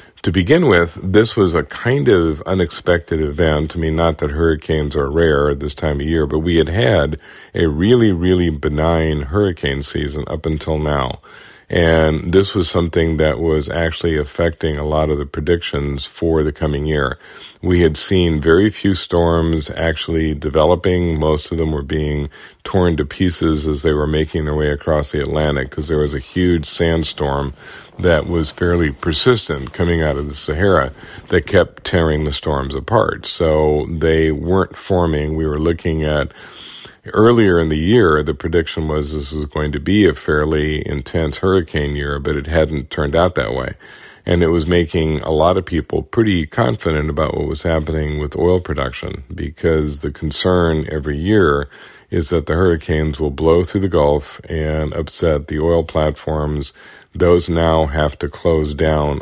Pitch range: 75-85 Hz